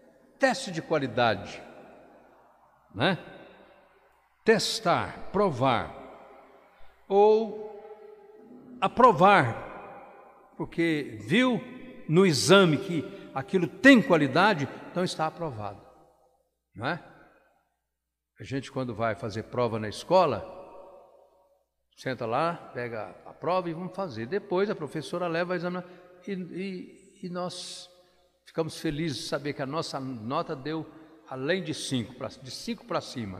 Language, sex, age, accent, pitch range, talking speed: Portuguese, male, 60-79, Brazilian, 130-185 Hz, 110 wpm